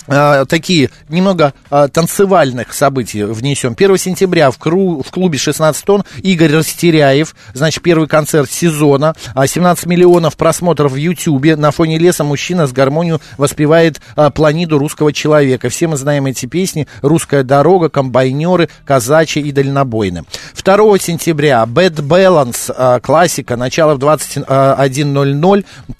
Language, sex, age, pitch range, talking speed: Russian, male, 50-69, 140-170 Hz, 130 wpm